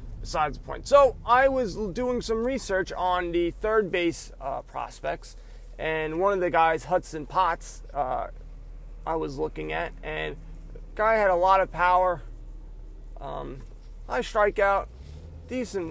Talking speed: 145 wpm